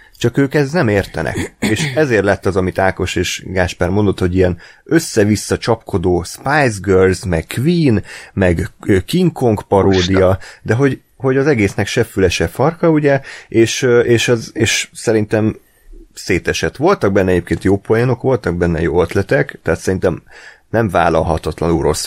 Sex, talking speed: male, 150 wpm